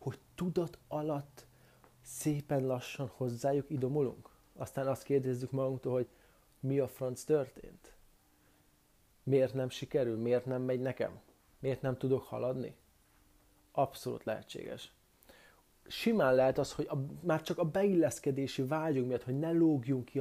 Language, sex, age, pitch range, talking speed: Hungarian, male, 30-49, 125-145 Hz, 125 wpm